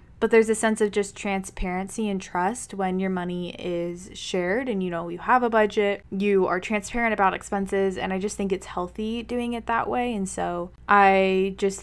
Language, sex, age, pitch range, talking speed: English, female, 20-39, 185-220 Hz, 205 wpm